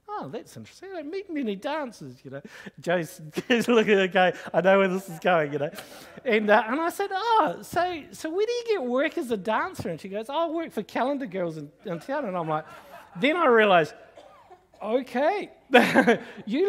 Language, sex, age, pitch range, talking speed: English, male, 50-69, 180-275 Hz, 200 wpm